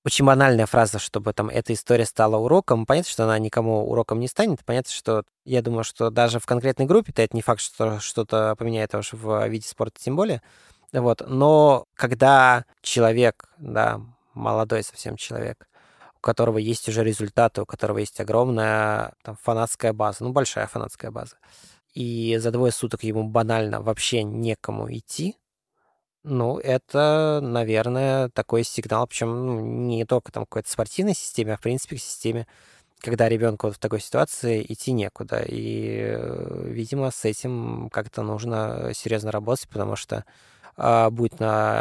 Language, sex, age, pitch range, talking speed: Russian, male, 20-39, 110-125 Hz, 155 wpm